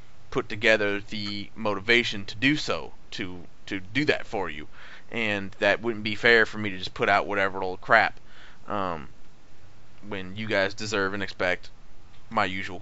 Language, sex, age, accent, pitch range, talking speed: English, male, 30-49, American, 110-150 Hz, 170 wpm